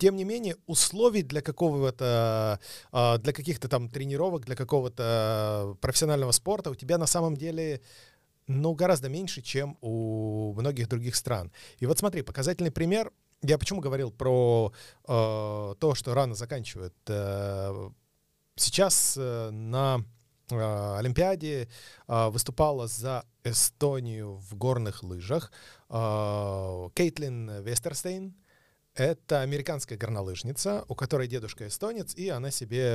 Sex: male